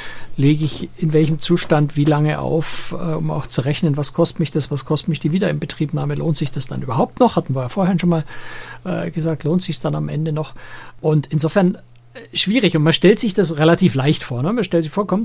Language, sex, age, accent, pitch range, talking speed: German, male, 60-79, German, 145-170 Hz, 230 wpm